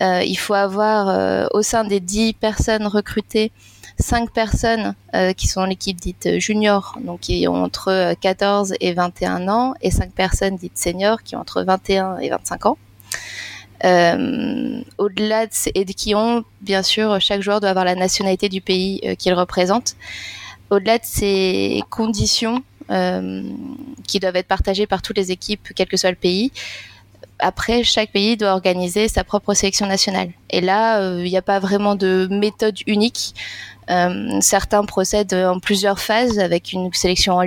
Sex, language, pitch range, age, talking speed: female, French, 185-215 Hz, 20-39, 180 wpm